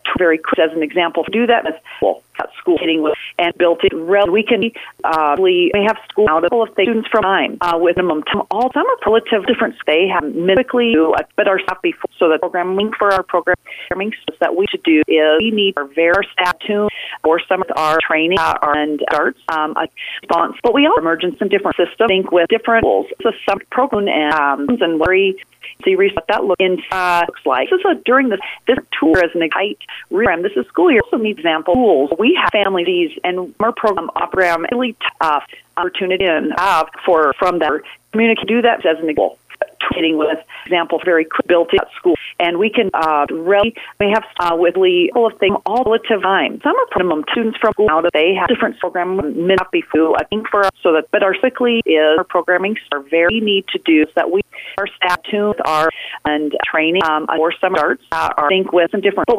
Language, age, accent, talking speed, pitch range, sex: English, 40-59, American, 210 wpm, 170-230 Hz, female